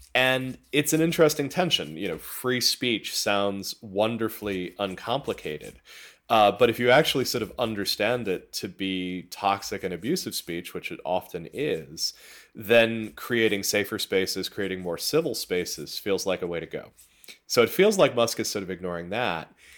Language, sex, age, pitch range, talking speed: Danish, male, 30-49, 90-115 Hz, 165 wpm